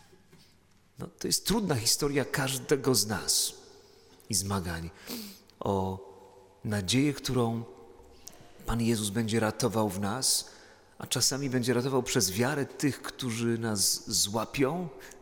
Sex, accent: male, native